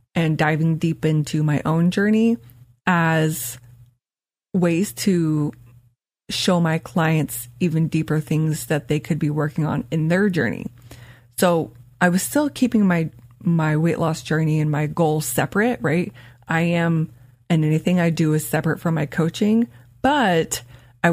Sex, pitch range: female, 150-195 Hz